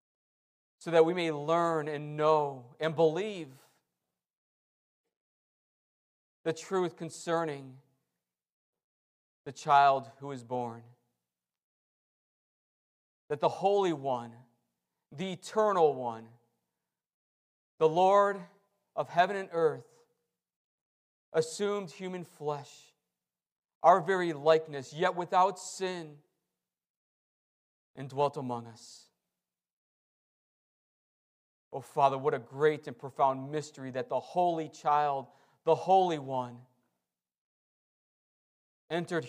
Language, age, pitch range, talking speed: English, 40-59, 120-165 Hz, 90 wpm